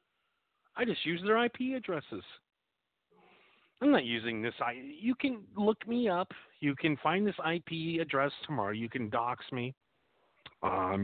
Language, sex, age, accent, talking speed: Danish, male, 40-59, American, 150 wpm